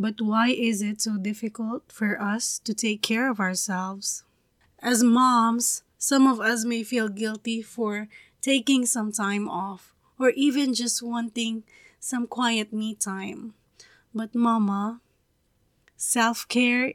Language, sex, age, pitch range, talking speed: English, female, 20-39, 210-250 Hz, 130 wpm